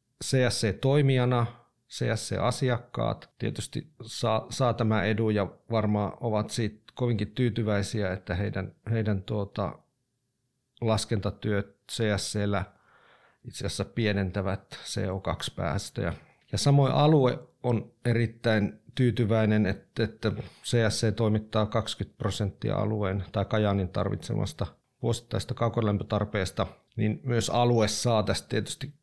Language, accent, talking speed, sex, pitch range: Finnish, native, 95 wpm, male, 105-125 Hz